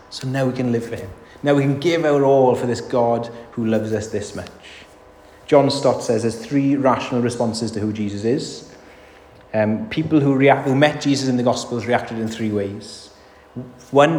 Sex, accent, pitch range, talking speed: male, British, 100-130 Hz, 195 wpm